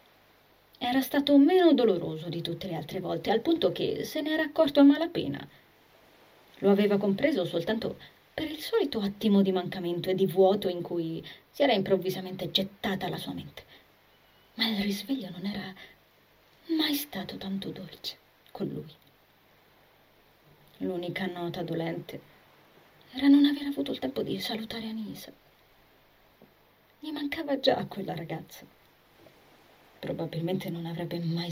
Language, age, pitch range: Italian, 30-49, 170-225 Hz